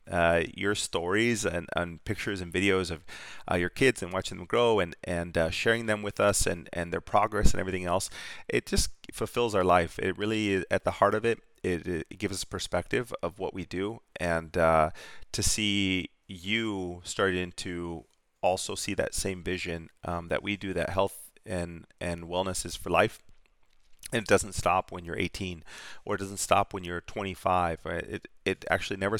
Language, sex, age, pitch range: English, male, 30-49, 90-105 Hz